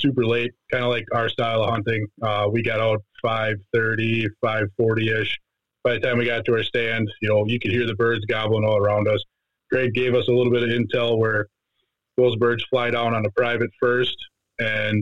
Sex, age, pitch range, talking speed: male, 20-39, 110-125 Hz, 210 wpm